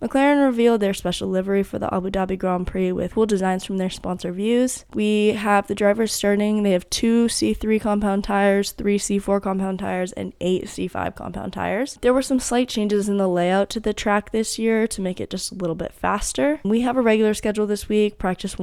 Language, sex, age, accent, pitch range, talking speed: English, female, 10-29, American, 185-220 Hz, 215 wpm